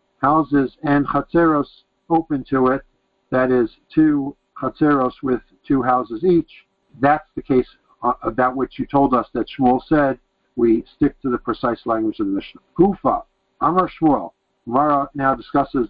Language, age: English, 60-79